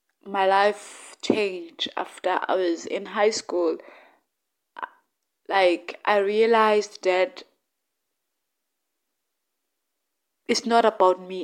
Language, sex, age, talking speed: English, female, 20-39, 90 wpm